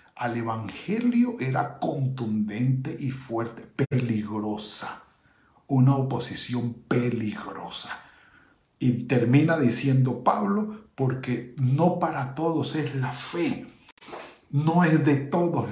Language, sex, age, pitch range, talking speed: Spanish, male, 50-69, 130-170 Hz, 95 wpm